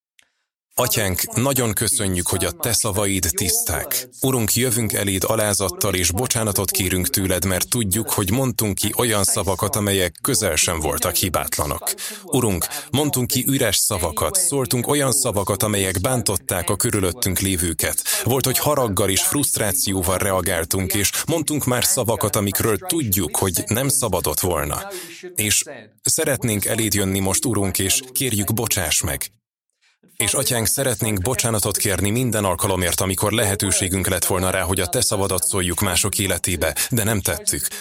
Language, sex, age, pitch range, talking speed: Hungarian, male, 30-49, 95-120 Hz, 140 wpm